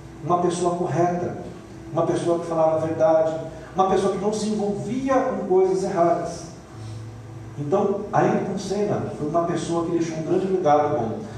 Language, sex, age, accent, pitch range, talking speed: Portuguese, male, 40-59, Brazilian, 160-220 Hz, 165 wpm